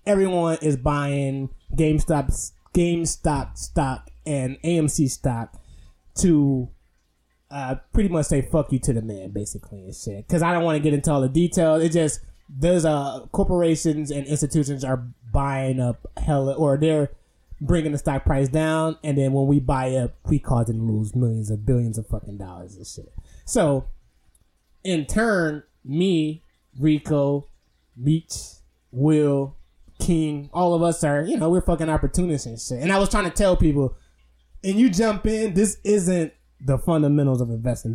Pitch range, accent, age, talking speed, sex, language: 120-155 Hz, American, 20-39, 165 wpm, male, English